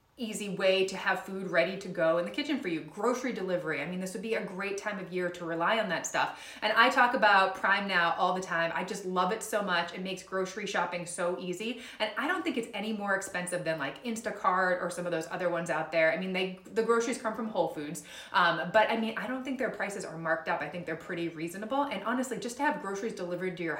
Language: English